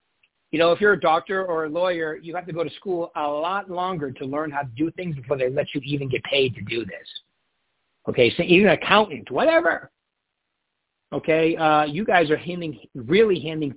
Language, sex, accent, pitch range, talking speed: English, male, American, 135-175 Hz, 210 wpm